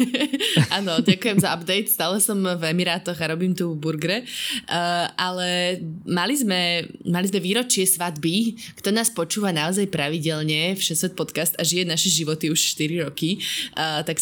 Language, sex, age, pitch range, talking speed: Slovak, female, 20-39, 165-195 Hz, 150 wpm